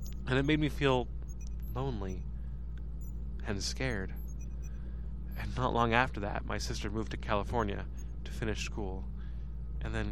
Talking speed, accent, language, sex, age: 135 wpm, American, English, male, 20-39